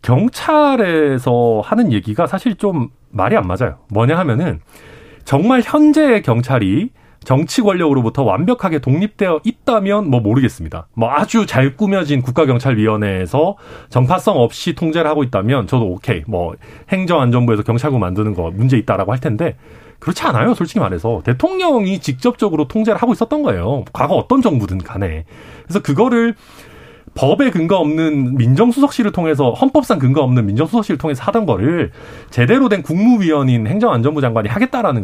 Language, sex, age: Korean, male, 40-59